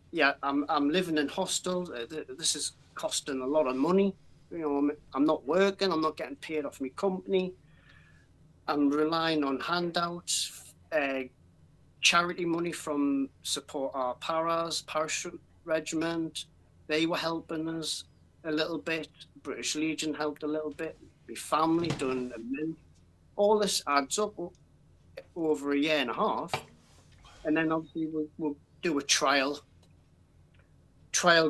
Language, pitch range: English, 120-160 Hz